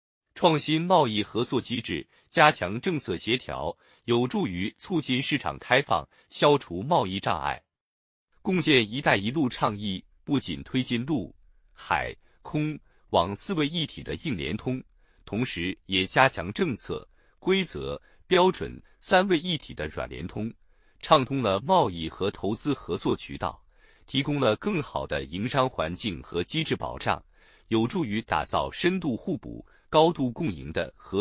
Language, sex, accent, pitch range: Chinese, male, native, 100-150 Hz